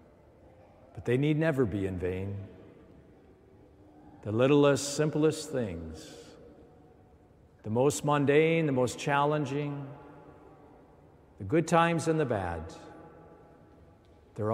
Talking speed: 100 wpm